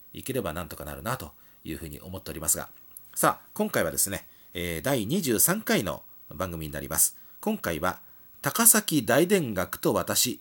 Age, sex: 40-59, male